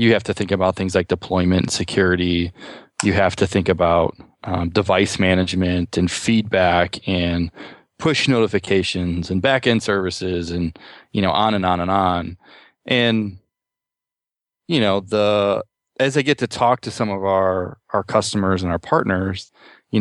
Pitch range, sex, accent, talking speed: 90-105 Hz, male, American, 160 wpm